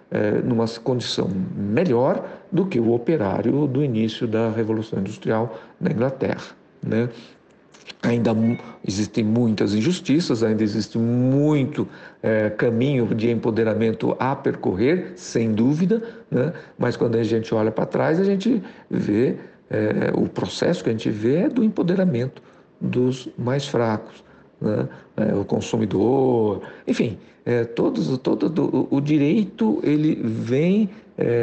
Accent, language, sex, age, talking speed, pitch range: Brazilian, Portuguese, male, 60-79, 120 wpm, 115-155 Hz